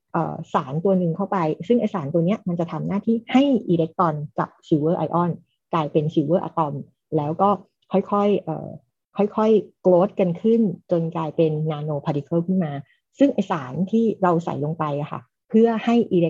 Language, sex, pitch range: Thai, female, 160-195 Hz